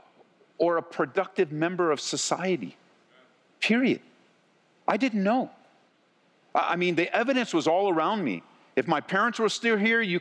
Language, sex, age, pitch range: English, male, 50-69, 180-230 Hz